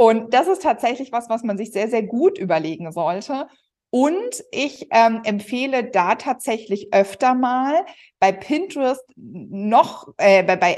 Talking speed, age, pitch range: 150 wpm, 50-69, 195-255 Hz